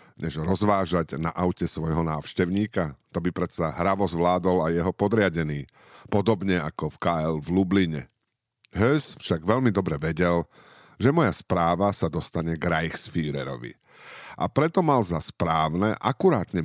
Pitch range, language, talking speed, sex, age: 85-110 Hz, Slovak, 135 wpm, male, 50-69